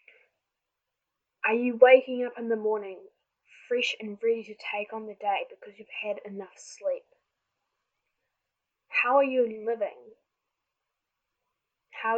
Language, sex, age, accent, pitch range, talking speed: English, female, 10-29, Australian, 215-330 Hz, 125 wpm